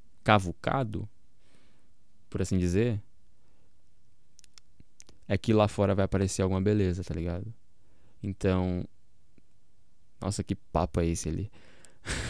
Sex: male